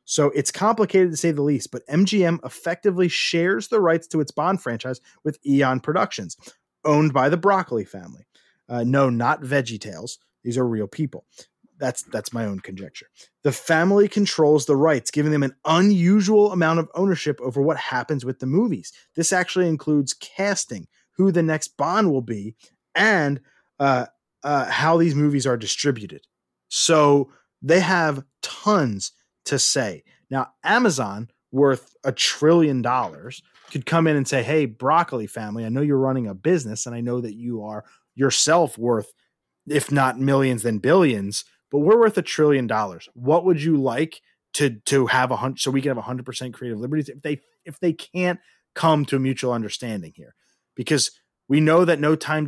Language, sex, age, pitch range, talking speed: English, male, 30-49, 125-165 Hz, 175 wpm